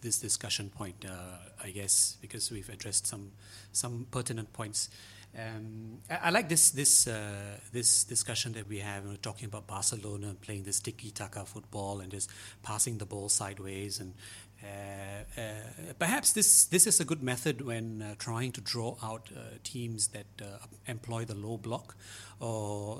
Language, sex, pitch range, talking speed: English, male, 110-170 Hz, 165 wpm